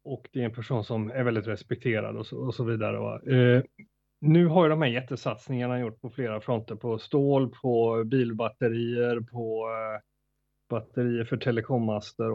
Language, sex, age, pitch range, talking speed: Swedish, male, 30-49, 110-130 Hz, 165 wpm